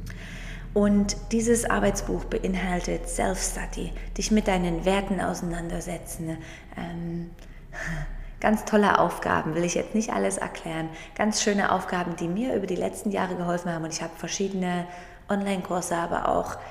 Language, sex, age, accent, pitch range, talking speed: German, female, 20-39, German, 170-205 Hz, 135 wpm